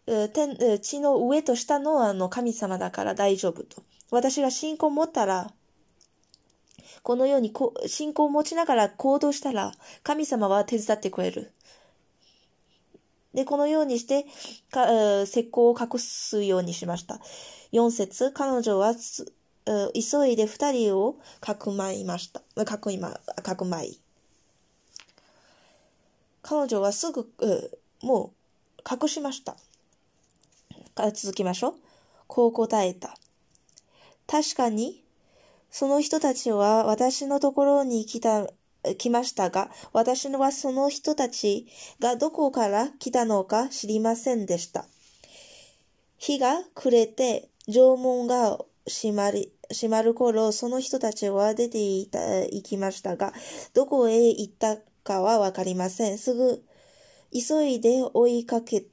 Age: 20-39